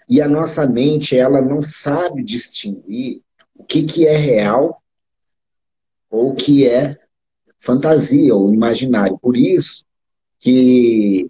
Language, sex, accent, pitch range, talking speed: Portuguese, male, Brazilian, 120-155 Hz, 120 wpm